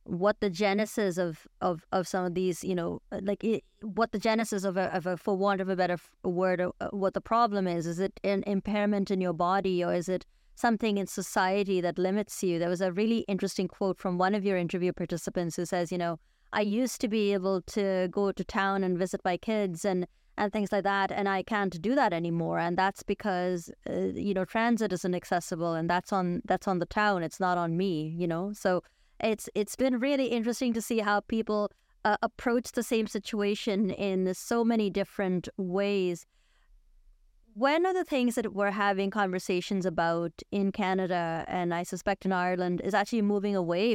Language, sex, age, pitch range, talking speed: English, female, 30-49, 180-210 Hz, 200 wpm